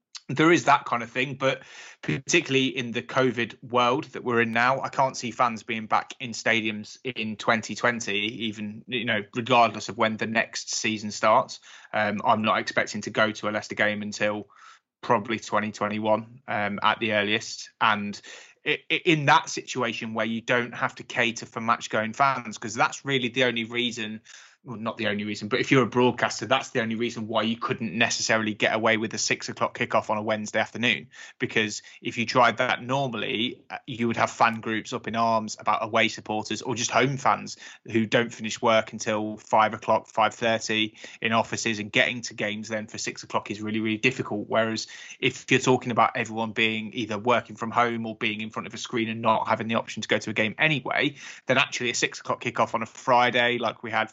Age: 20-39